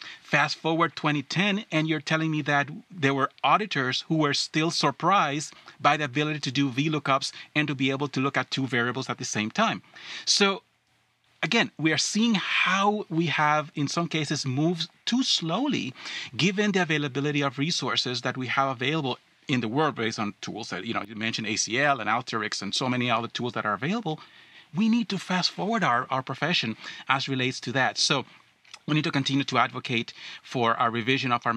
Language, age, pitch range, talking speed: English, 30-49, 125-165 Hz, 195 wpm